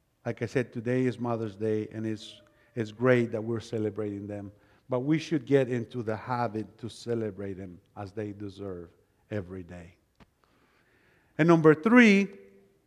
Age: 50-69